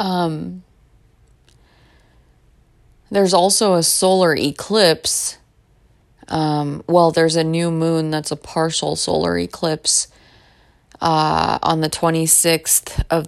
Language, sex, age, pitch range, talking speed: English, female, 20-39, 140-160 Hz, 100 wpm